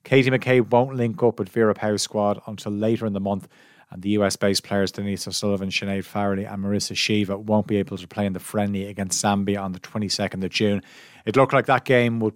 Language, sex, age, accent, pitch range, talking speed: English, male, 30-49, Irish, 100-115 Hz, 225 wpm